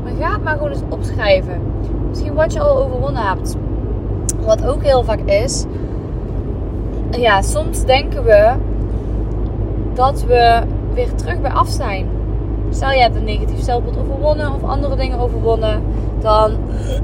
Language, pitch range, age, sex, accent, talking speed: Dutch, 100-110 Hz, 20-39, female, Dutch, 135 wpm